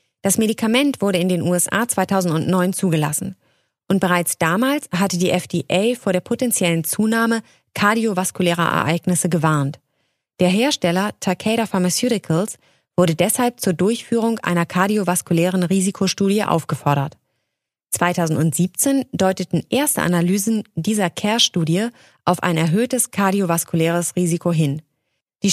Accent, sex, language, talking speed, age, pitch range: German, female, German, 110 wpm, 20-39, 170-220 Hz